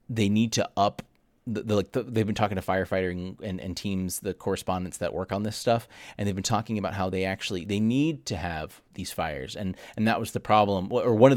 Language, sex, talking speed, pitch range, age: English, male, 245 wpm, 95-110 Hz, 30-49